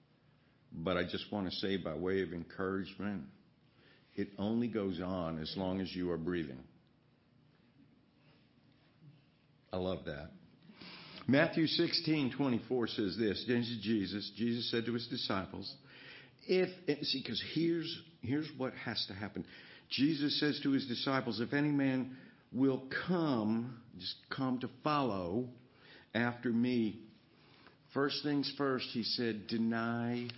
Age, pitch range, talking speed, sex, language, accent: 60-79, 100-135 Hz, 130 wpm, male, English, American